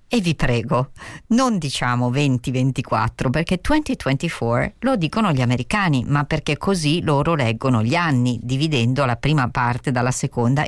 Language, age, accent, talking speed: Italian, 40-59, native, 140 wpm